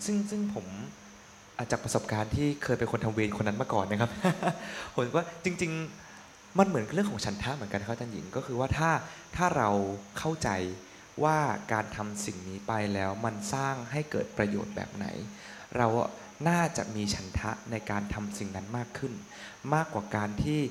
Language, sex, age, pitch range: Thai, male, 20-39, 105-150 Hz